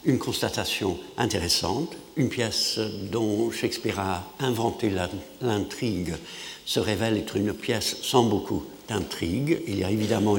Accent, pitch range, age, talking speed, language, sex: French, 105-155 Hz, 60-79, 125 wpm, French, male